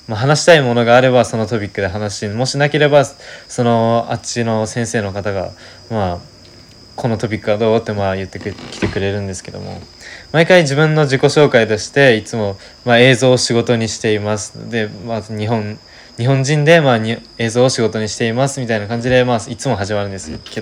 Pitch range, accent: 105-120 Hz, native